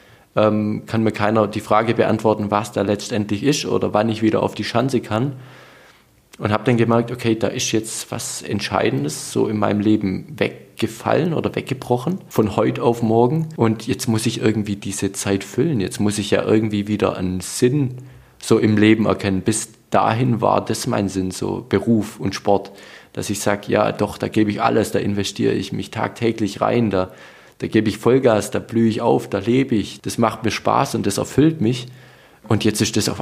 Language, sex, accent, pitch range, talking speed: German, male, German, 100-120 Hz, 195 wpm